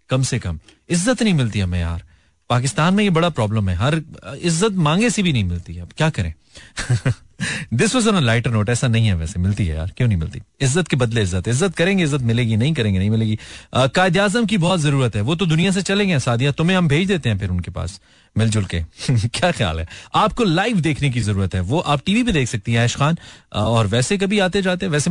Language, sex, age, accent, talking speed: Hindi, male, 30-49, native, 230 wpm